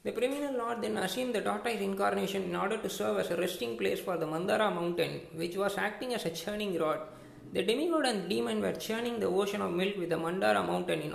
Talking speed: 230 wpm